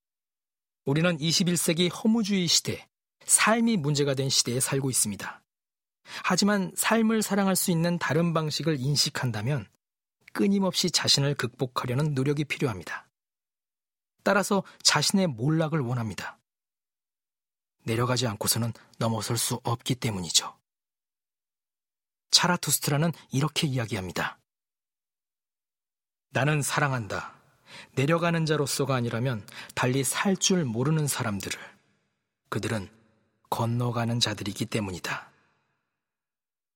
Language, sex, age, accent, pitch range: Korean, male, 40-59, native, 125-175 Hz